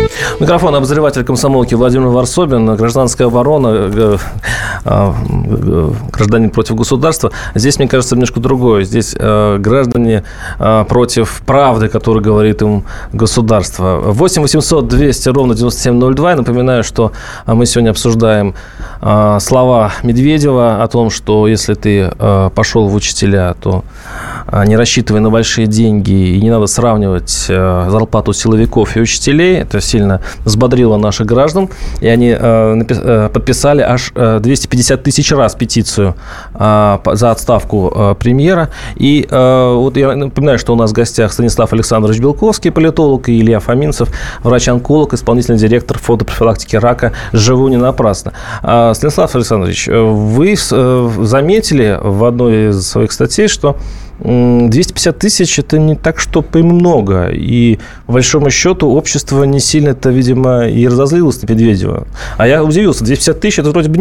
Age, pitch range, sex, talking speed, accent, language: 20-39, 110-135 Hz, male, 130 wpm, native, Russian